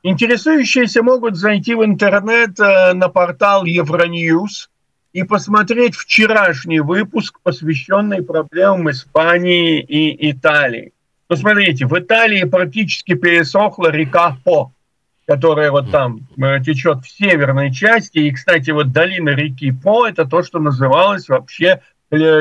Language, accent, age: Russian, native, 50-69